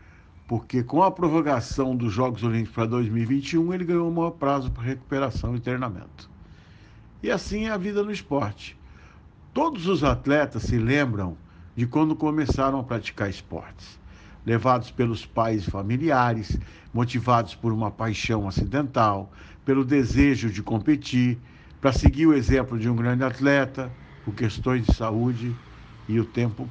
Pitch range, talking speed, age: 105-135 Hz, 145 wpm, 60-79